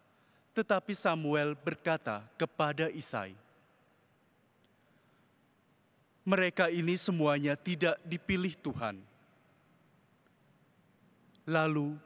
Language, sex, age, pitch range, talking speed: Indonesian, male, 20-39, 145-185 Hz, 60 wpm